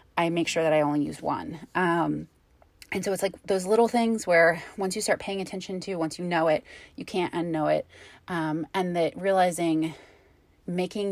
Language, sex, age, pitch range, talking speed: English, female, 20-39, 160-190 Hz, 195 wpm